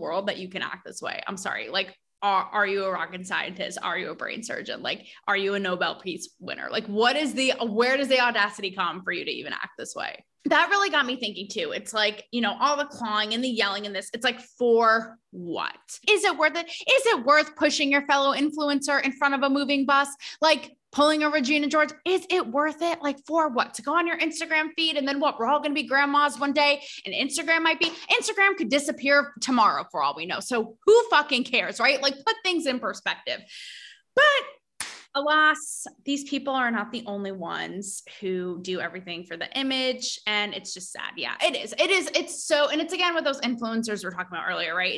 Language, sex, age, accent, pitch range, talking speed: English, female, 20-39, American, 210-300 Hz, 230 wpm